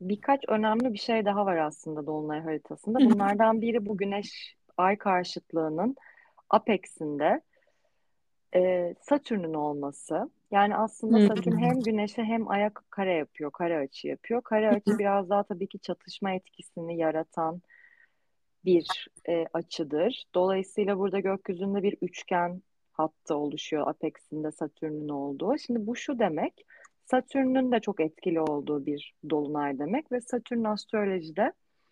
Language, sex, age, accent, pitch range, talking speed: Turkish, female, 30-49, native, 165-215 Hz, 130 wpm